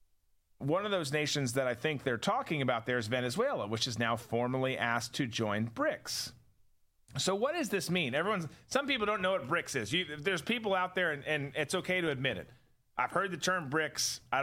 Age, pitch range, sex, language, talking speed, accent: 40-59, 125-175 Hz, male, English, 215 wpm, American